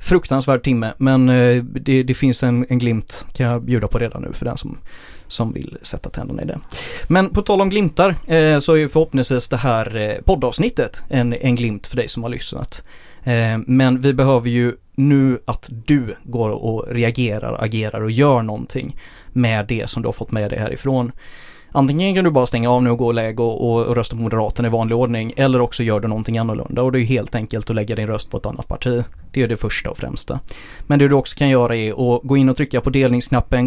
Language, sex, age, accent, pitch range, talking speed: Swedish, male, 30-49, native, 115-135 Hz, 220 wpm